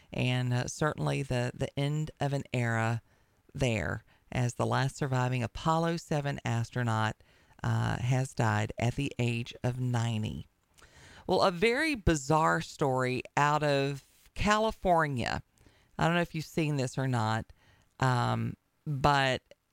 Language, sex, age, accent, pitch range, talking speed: English, female, 40-59, American, 120-165 Hz, 135 wpm